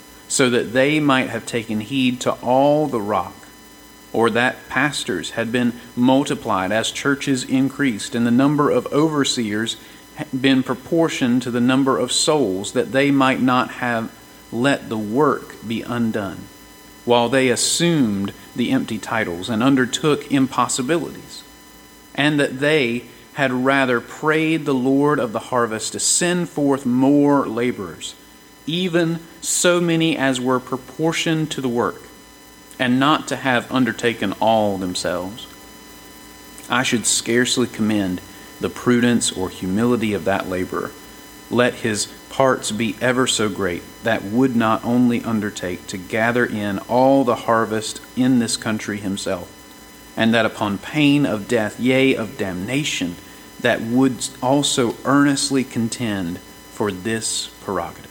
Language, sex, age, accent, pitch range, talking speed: English, male, 40-59, American, 110-135 Hz, 140 wpm